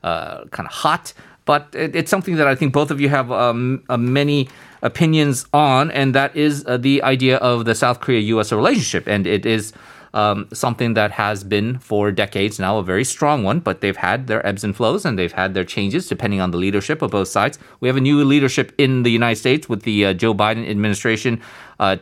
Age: 30-49